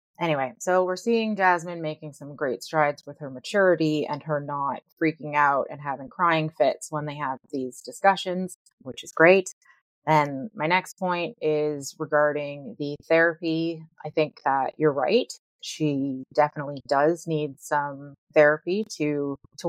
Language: English